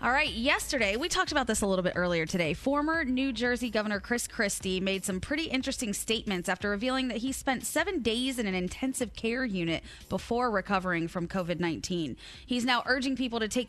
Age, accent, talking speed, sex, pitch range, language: 20-39, American, 195 wpm, female, 195-265 Hz, English